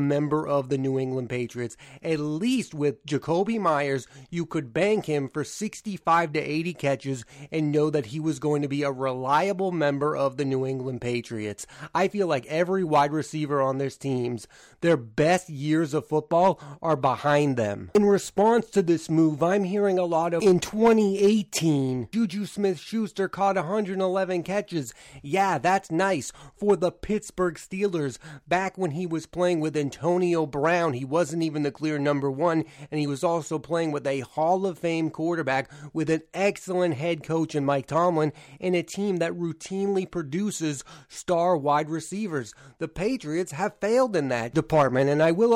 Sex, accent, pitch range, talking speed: male, American, 145-185 Hz, 170 wpm